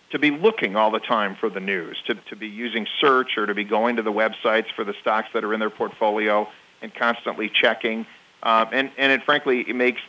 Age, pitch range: 40-59, 105-125 Hz